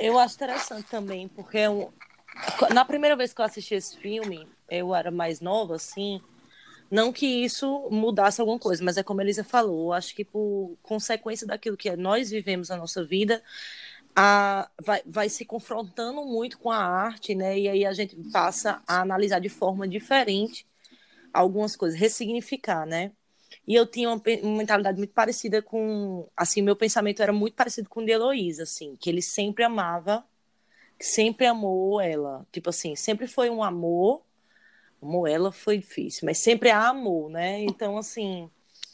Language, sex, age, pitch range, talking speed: Portuguese, female, 20-39, 185-230 Hz, 170 wpm